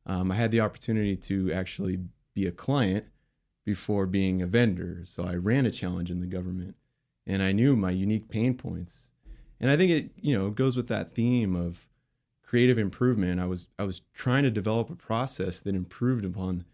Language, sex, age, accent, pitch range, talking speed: English, male, 30-49, American, 95-120 Hz, 195 wpm